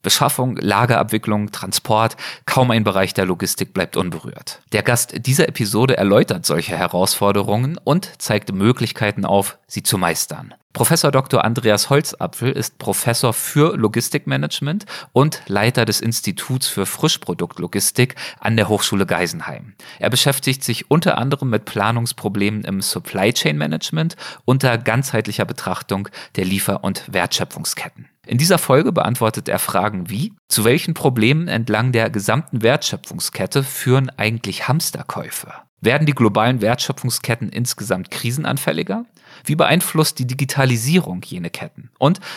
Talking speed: 125 wpm